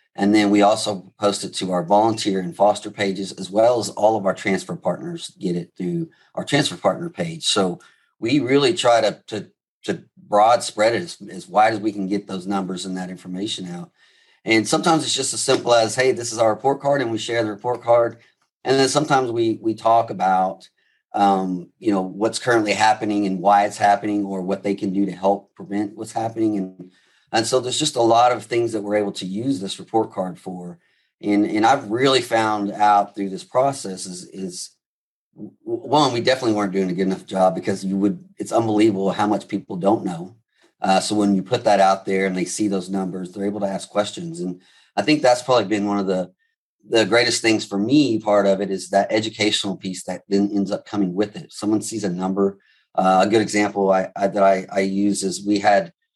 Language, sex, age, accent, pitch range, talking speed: English, male, 40-59, American, 95-115 Hz, 225 wpm